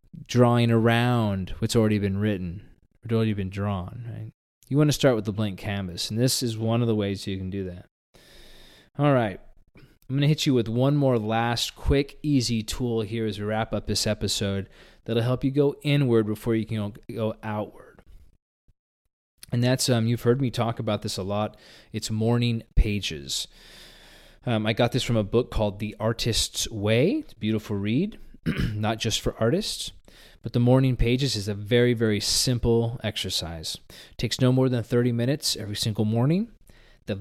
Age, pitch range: 20-39, 105-125 Hz